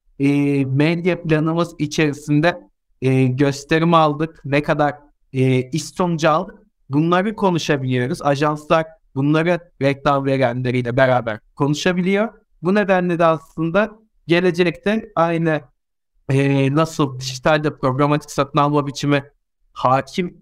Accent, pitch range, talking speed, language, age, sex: native, 140-175 Hz, 100 wpm, Turkish, 60-79, male